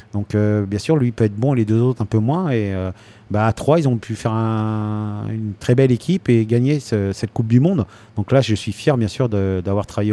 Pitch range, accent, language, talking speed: 100-115 Hz, French, French, 265 wpm